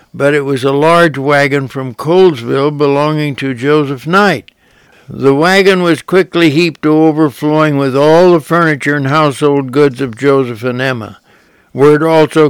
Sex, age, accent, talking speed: male, 60-79, American, 155 wpm